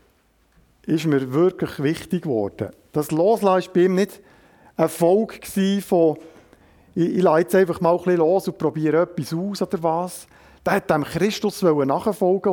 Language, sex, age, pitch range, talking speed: German, male, 50-69, 160-200 Hz, 165 wpm